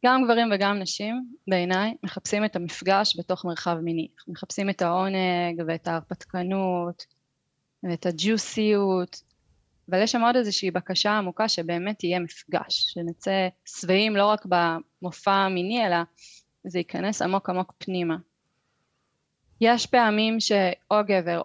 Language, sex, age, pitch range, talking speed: Hebrew, female, 20-39, 175-215 Hz, 125 wpm